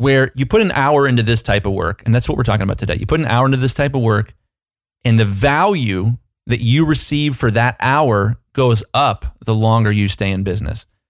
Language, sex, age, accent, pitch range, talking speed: English, male, 30-49, American, 110-140 Hz, 230 wpm